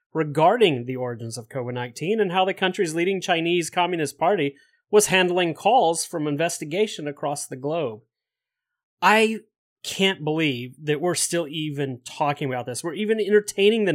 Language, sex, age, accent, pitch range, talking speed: English, male, 30-49, American, 140-190 Hz, 155 wpm